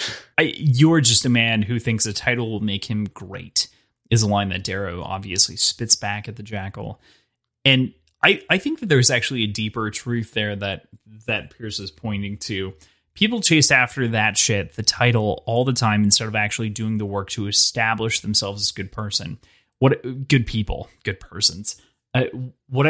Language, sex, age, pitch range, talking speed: English, male, 20-39, 105-125 Hz, 185 wpm